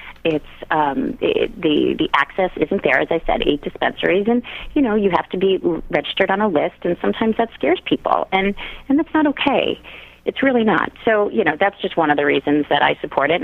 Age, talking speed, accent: 30-49, 220 wpm, American